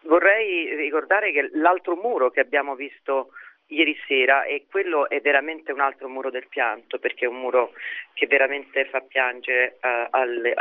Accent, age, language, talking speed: native, 40-59, Italian, 145 wpm